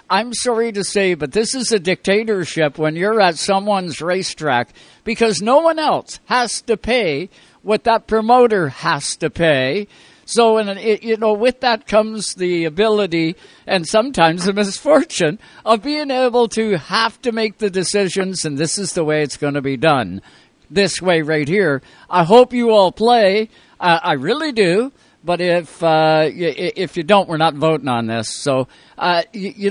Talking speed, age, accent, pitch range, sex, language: 170 wpm, 60-79, American, 160-220 Hz, male, English